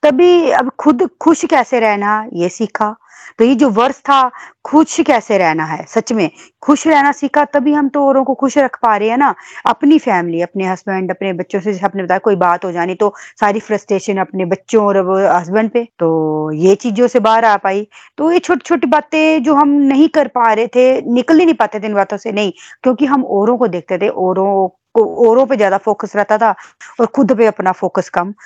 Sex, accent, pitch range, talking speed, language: female, native, 195-260 Hz, 210 wpm, Hindi